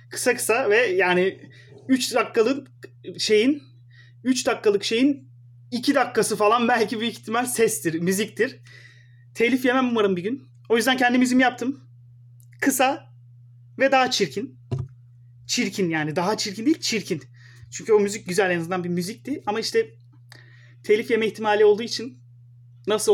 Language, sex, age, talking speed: Turkish, male, 30-49, 135 wpm